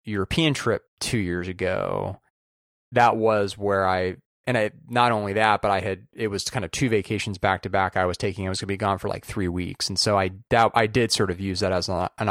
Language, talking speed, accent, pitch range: English, 245 wpm, American, 95-120 Hz